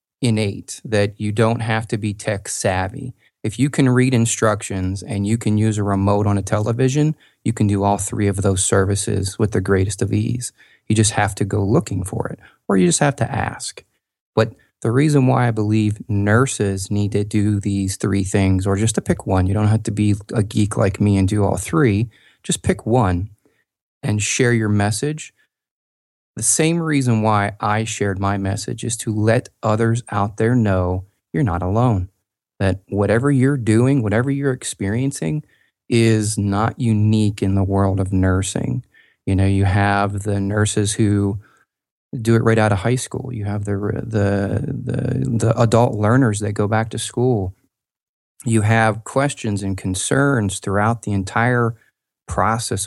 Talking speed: 175 wpm